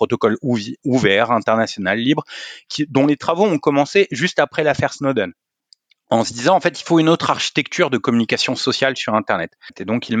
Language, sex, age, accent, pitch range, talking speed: French, male, 30-49, French, 120-165 Hz, 190 wpm